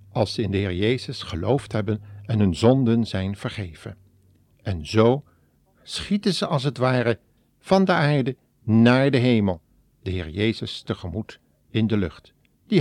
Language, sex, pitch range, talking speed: Dutch, male, 100-130 Hz, 160 wpm